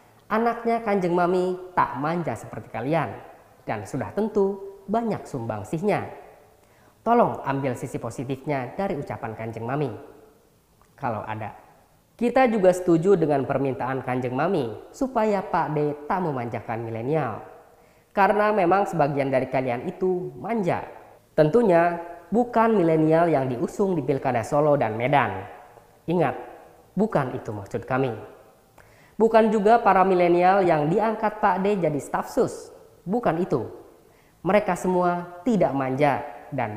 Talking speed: 120 wpm